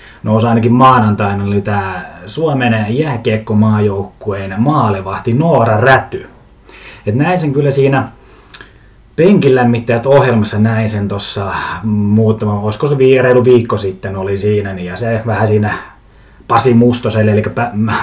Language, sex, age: Finnish, male, 20-39